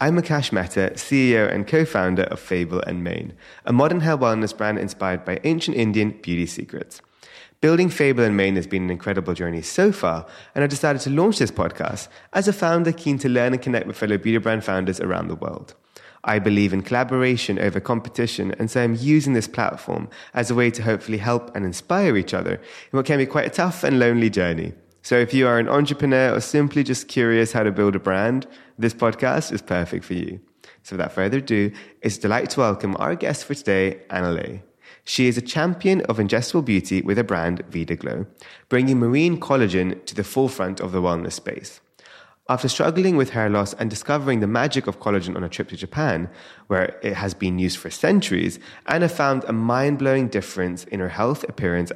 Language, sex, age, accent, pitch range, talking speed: English, male, 20-39, British, 95-135 Hz, 205 wpm